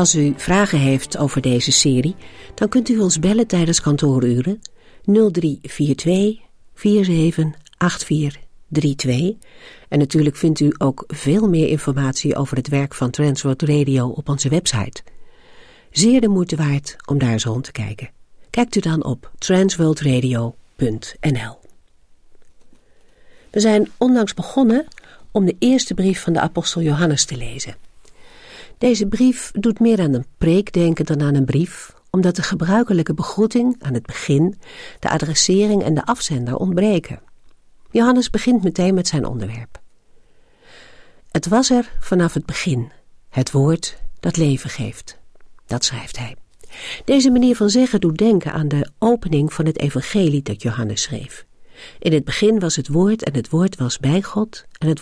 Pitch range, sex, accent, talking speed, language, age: 140-205 Hz, female, Dutch, 150 wpm, Dutch, 50-69